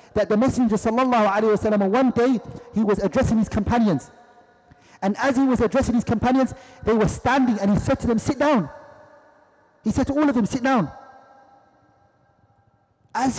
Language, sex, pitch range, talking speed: English, male, 165-245 Hz, 165 wpm